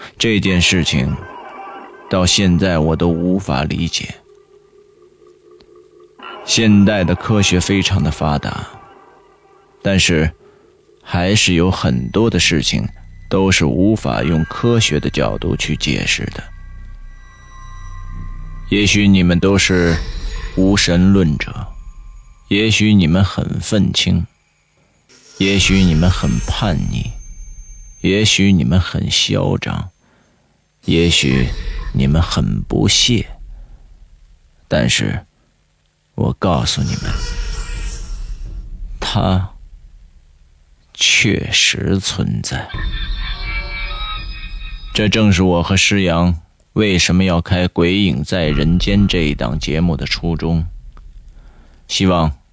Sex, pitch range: male, 80-95 Hz